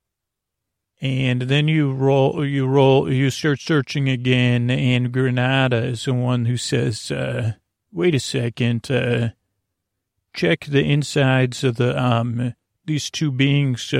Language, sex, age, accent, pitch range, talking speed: English, male, 40-59, American, 120-135 Hz, 135 wpm